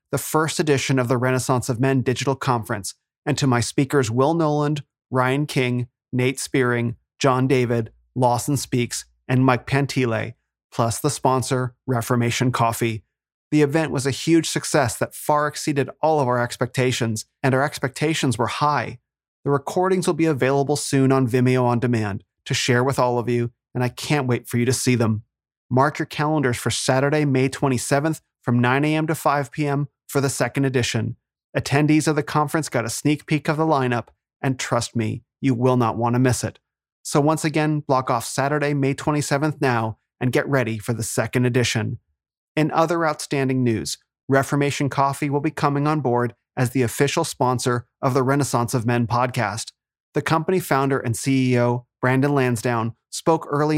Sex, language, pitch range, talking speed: male, English, 120-145 Hz, 175 wpm